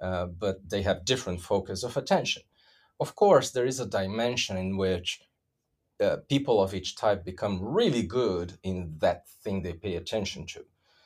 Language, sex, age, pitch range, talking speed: English, male, 40-59, 95-130 Hz, 170 wpm